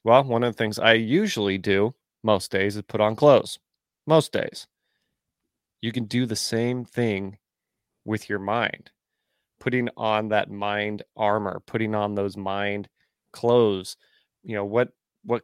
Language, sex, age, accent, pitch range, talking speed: English, male, 30-49, American, 105-120 Hz, 150 wpm